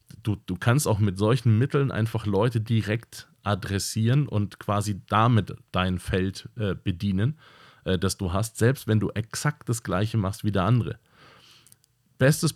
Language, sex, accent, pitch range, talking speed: German, male, German, 95-120 Hz, 160 wpm